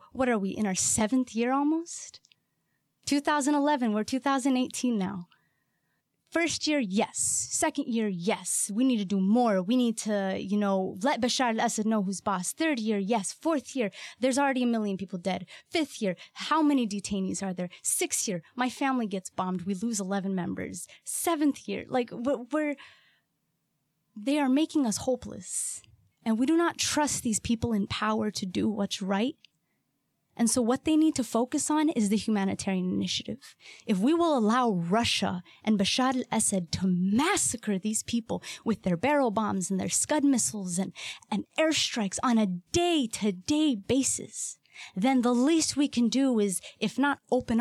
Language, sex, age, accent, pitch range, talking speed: English, female, 20-39, American, 200-275 Hz, 170 wpm